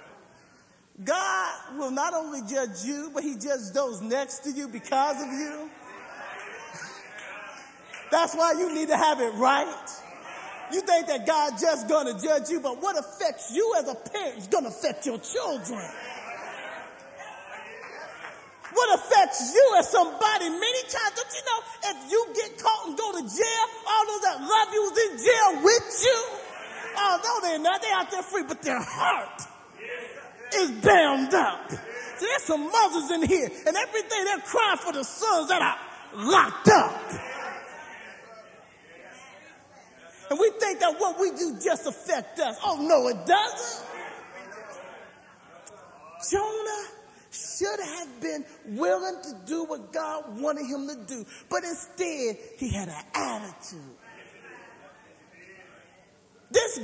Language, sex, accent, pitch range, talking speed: English, male, American, 285-415 Hz, 150 wpm